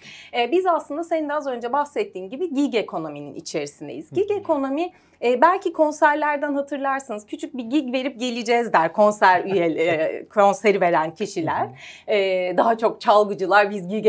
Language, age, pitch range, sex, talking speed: Turkish, 30-49, 210-320 Hz, female, 130 wpm